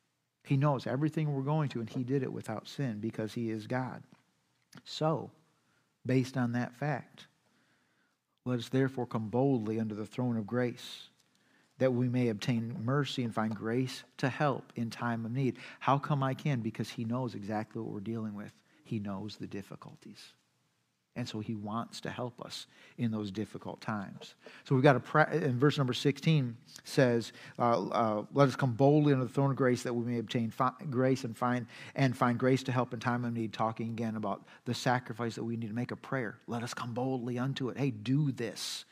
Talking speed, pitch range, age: 200 wpm, 120-140 Hz, 50-69